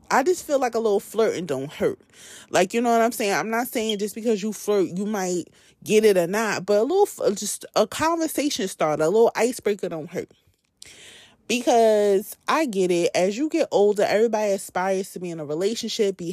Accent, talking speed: American, 205 wpm